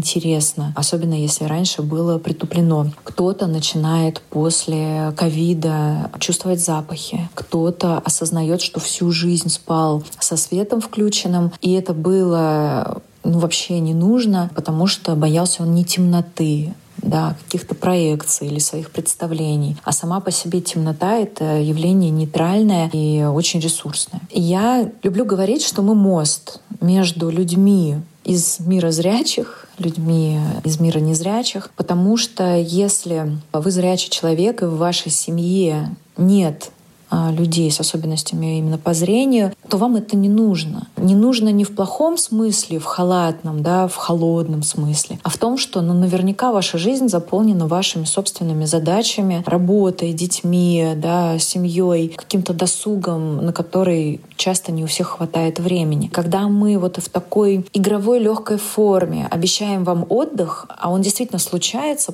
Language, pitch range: Russian, 160-190 Hz